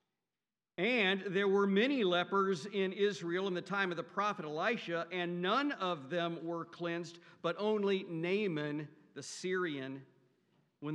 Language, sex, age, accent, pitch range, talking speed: English, male, 50-69, American, 150-180 Hz, 145 wpm